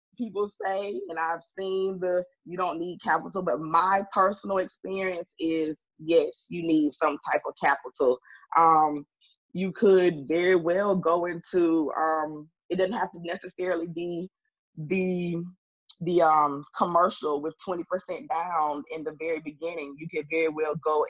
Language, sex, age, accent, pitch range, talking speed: English, female, 20-39, American, 160-180 Hz, 150 wpm